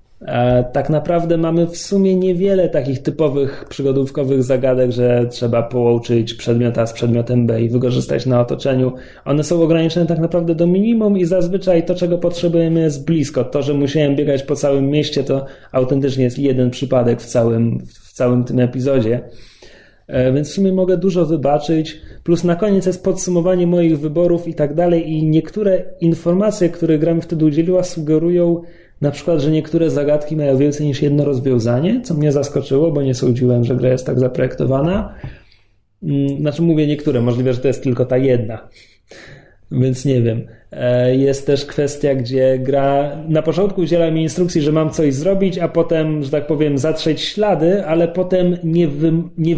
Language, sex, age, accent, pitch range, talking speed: Polish, male, 30-49, native, 130-165 Hz, 165 wpm